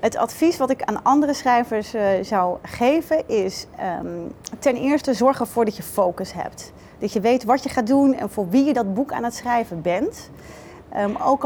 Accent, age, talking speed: Dutch, 30-49, 190 wpm